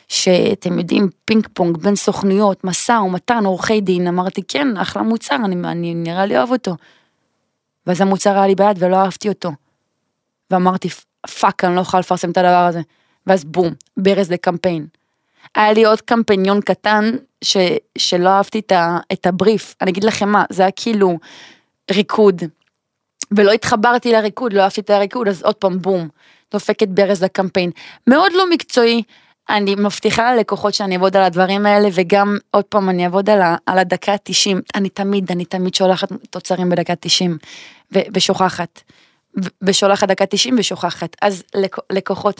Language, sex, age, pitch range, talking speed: Hebrew, female, 20-39, 185-215 Hz, 150 wpm